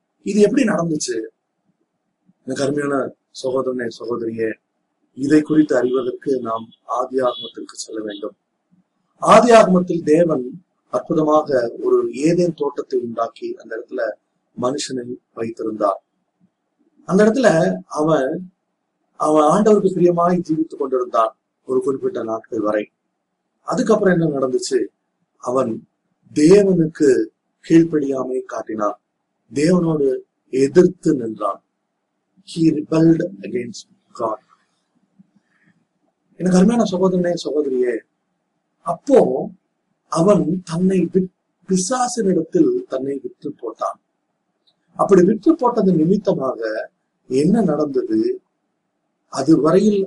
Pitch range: 145-205 Hz